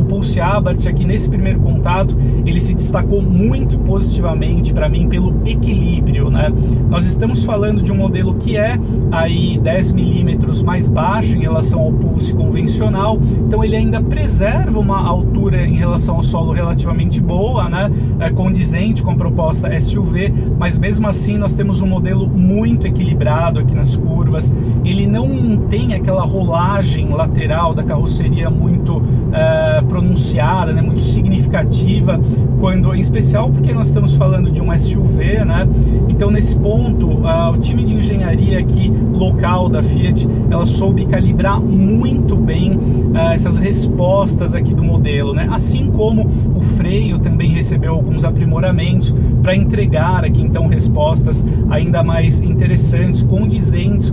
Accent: Brazilian